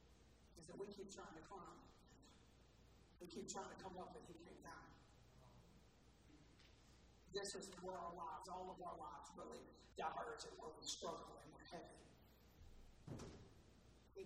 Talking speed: 145 wpm